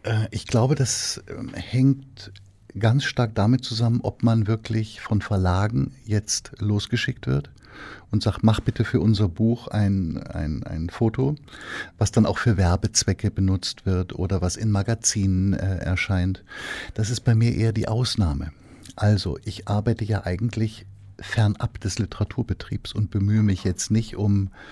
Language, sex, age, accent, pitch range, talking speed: German, male, 50-69, German, 95-115 Hz, 145 wpm